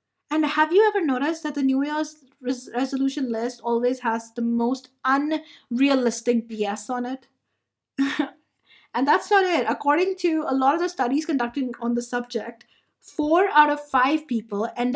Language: English